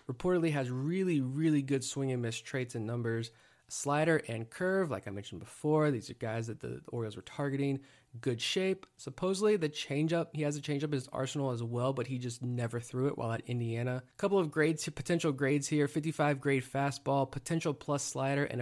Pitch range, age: 125-155 Hz, 20-39